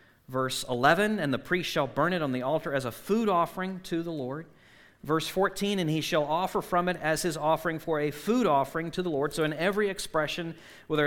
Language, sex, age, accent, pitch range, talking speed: English, male, 40-59, American, 145-195 Hz, 220 wpm